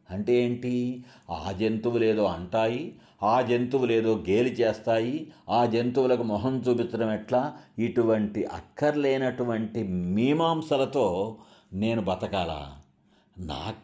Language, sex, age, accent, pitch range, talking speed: Telugu, male, 60-79, native, 100-140 Hz, 95 wpm